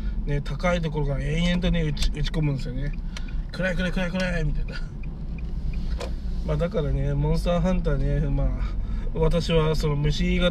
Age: 20-39